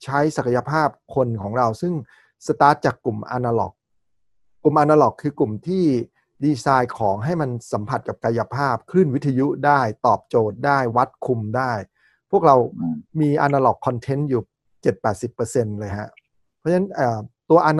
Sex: male